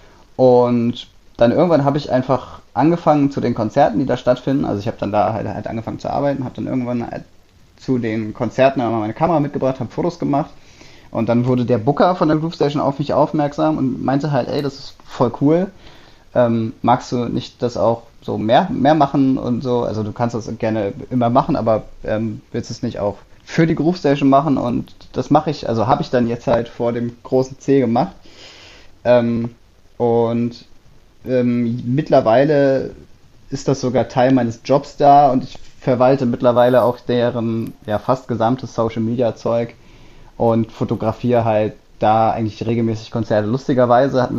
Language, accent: German, German